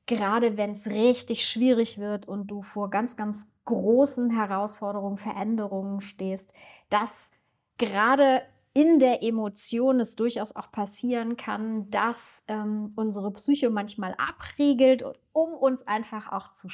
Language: German